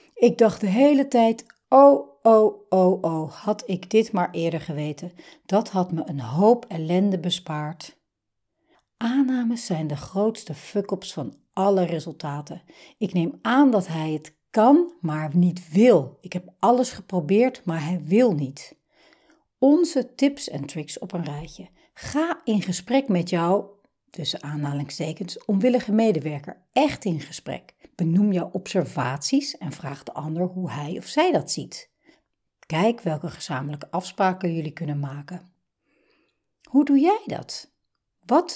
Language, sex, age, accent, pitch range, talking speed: Dutch, female, 60-79, Dutch, 160-240 Hz, 145 wpm